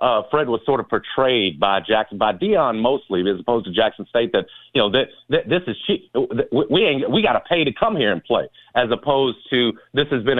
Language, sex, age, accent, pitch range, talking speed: English, male, 50-69, American, 120-160 Hz, 240 wpm